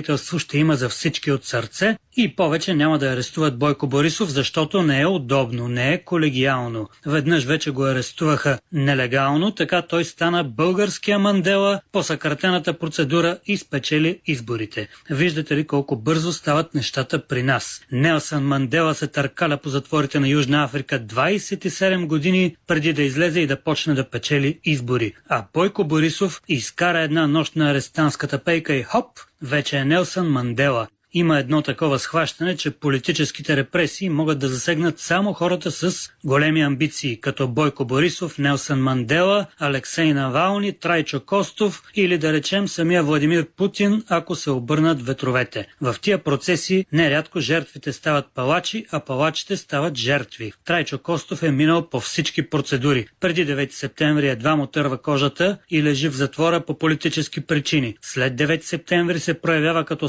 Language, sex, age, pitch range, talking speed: Bulgarian, male, 30-49, 140-170 Hz, 150 wpm